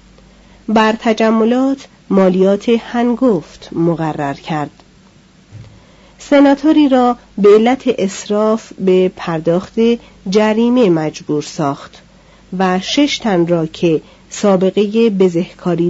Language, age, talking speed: Persian, 40-59, 85 wpm